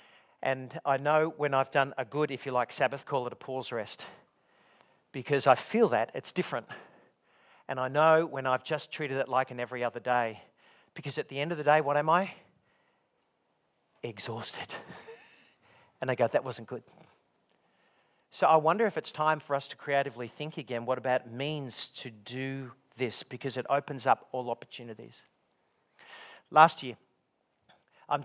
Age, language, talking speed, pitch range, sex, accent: 50-69, English, 170 wpm, 130-155 Hz, male, Australian